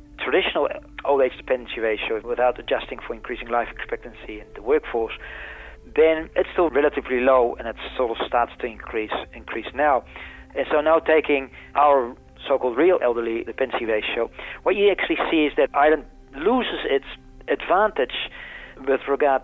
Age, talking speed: 40-59, 155 wpm